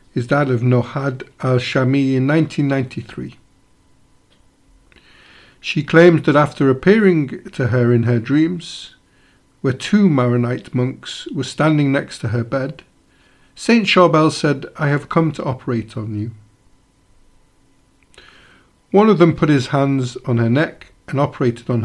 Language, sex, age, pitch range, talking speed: English, male, 50-69, 120-150 Hz, 135 wpm